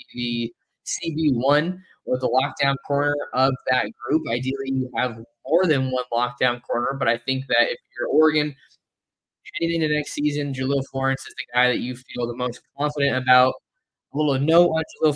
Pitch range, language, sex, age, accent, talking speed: 125-140 Hz, English, male, 20-39, American, 180 wpm